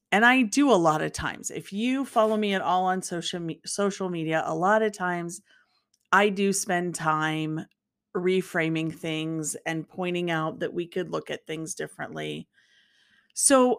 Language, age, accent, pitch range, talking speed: English, 40-59, American, 165-205 Hz, 165 wpm